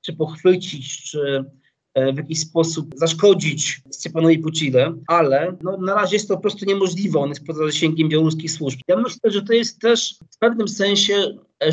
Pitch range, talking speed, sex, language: 150-175 Hz, 180 wpm, male, Polish